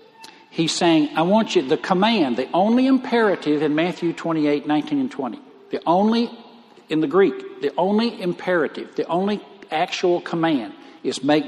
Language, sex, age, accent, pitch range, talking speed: English, male, 60-79, American, 155-225 Hz, 155 wpm